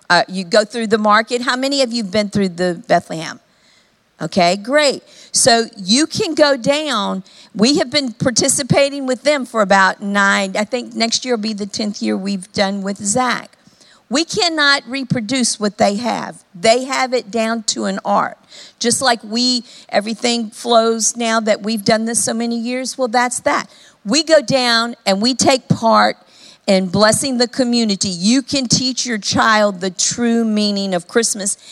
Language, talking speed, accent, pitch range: English, 180 wpm, American, 205-260 Hz